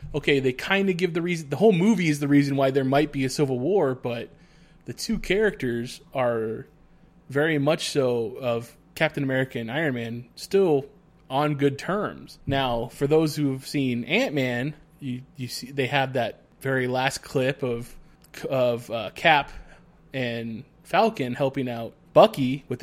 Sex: male